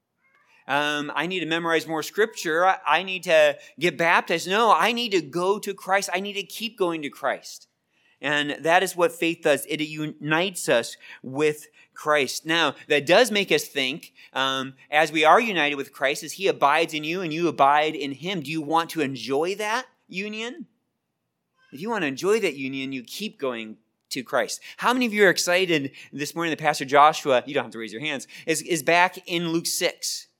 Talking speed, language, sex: 200 wpm, English, male